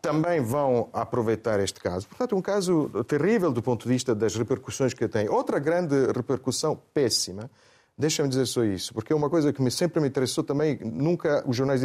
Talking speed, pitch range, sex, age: 195 wpm, 115-150 Hz, male, 40-59